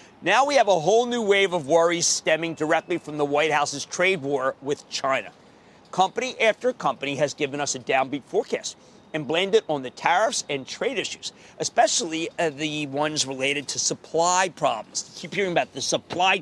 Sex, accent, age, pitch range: male, American, 40-59, 165-255 Hz